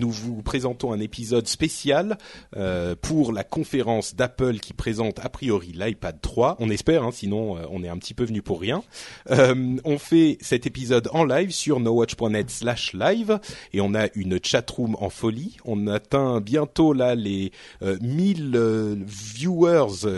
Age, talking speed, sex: 30-49, 175 wpm, male